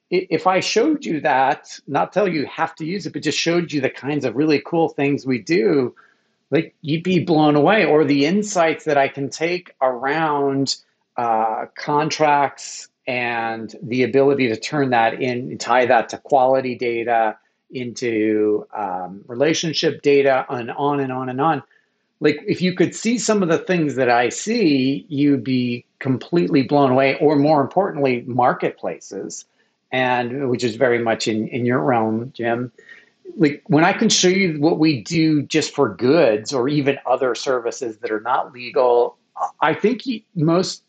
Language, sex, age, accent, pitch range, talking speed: English, male, 40-59, American, 130-165 Hz, 170 wpm